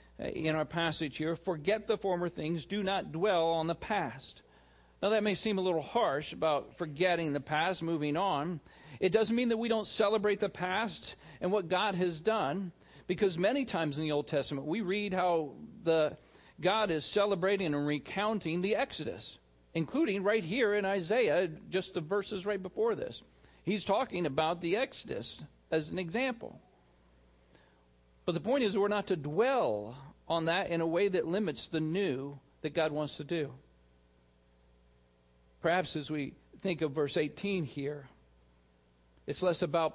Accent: American